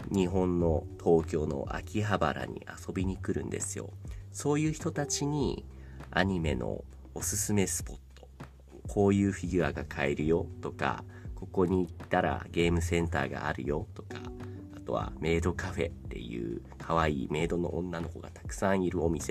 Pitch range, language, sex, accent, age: 80-105 Hz, Japanese, male, native, 40-59